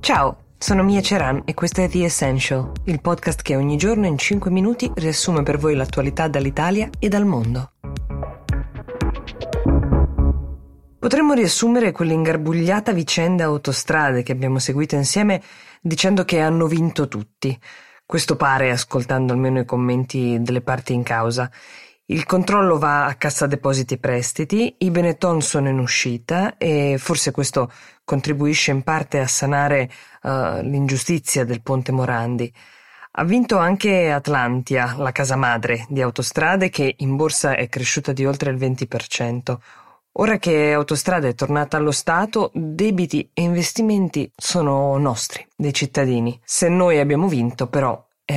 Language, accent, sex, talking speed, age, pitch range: Italian, native, female, 140 wpm, 20-39, 125-170 Hz